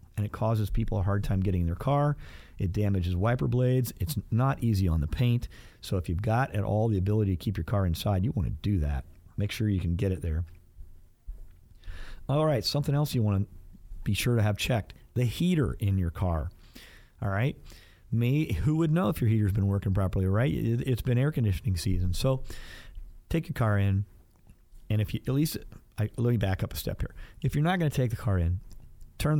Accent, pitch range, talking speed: American, 90-115 Hz, 220 wpm